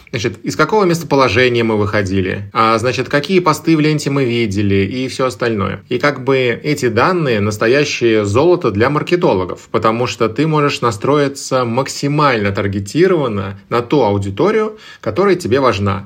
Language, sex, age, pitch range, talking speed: Russian, male, 20-39, 110-150 Hz, 145 wpm